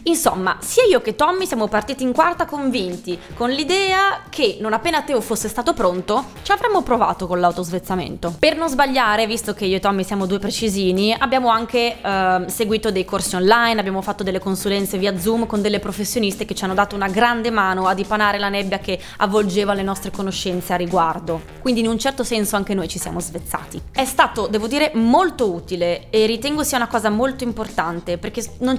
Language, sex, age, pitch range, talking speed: Italian, female, 20-39, 185-230 Hz, 195 wpm